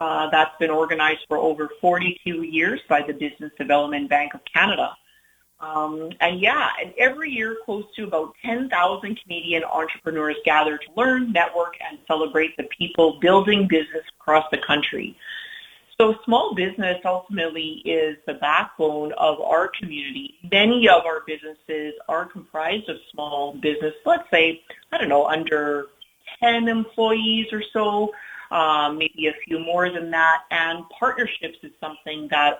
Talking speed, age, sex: 150 wpm, 40-59, female